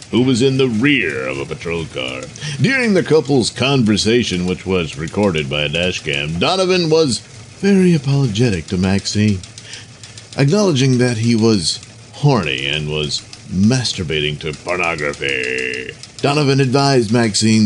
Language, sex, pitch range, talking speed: English, male, 95-130 Hz, 130 wpm